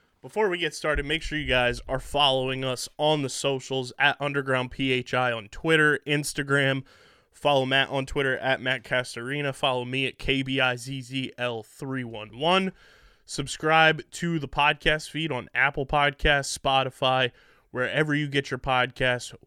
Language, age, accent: English, 20-39, American